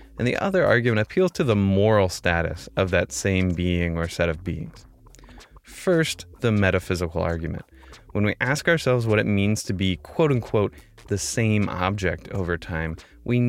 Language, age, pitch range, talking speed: English, 20-39, 90-110 Hz, 170 wpm